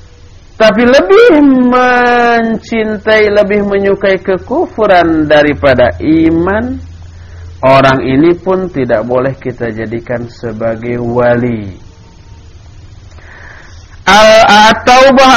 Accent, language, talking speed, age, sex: Indonesian, English, 70 wpm, 50-69, male